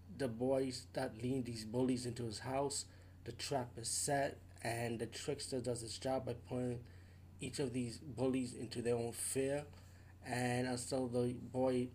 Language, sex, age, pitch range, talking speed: English, male, 30-49, 105-130 Hz, 165 wpm